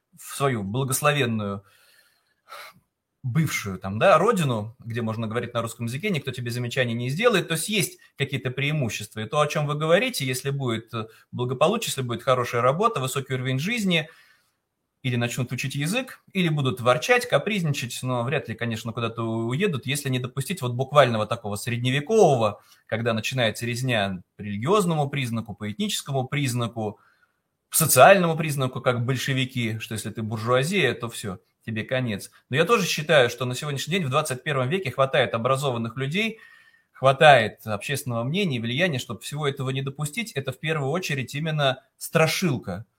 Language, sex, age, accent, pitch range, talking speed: Russian, male, 20-39, native, 120-160 Hz, 155 wpm